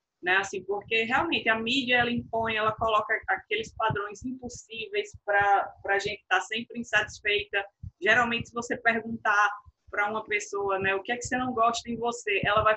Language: Portuguese